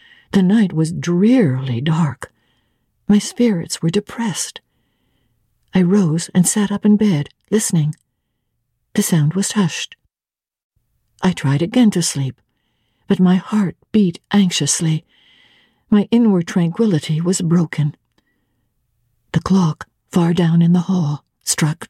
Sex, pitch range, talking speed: female, 140-210 Hz, 120 wpm